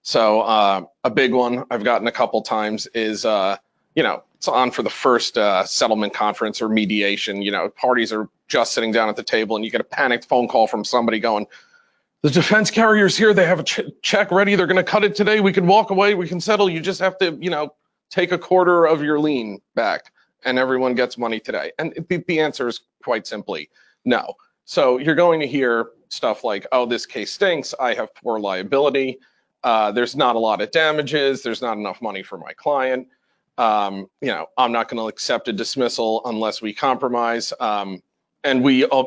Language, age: English, 40-59